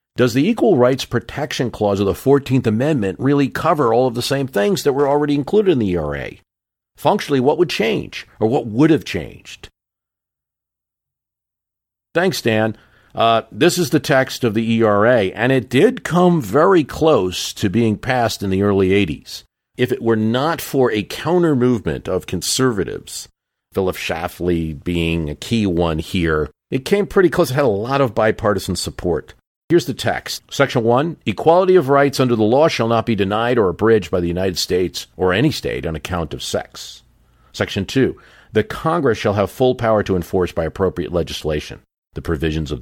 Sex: male